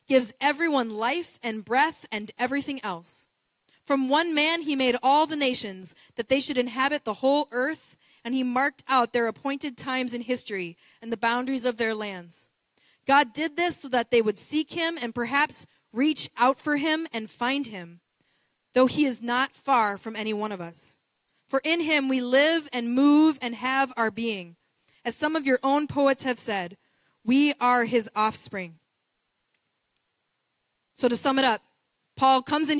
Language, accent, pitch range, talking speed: English, American, 235-305 Hz, 175 wpm